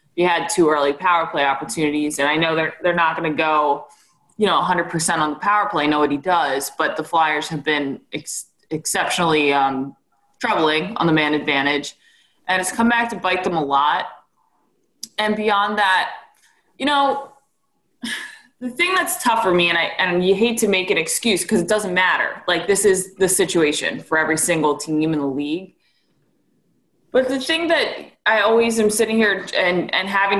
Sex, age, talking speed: female, 20-39, 190 wpm